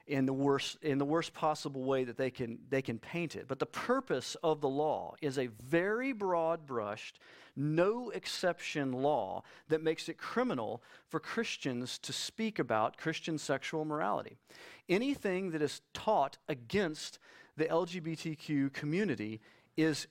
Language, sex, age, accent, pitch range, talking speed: English, male, 40-59, American, 140-185 Hz, 150 wpm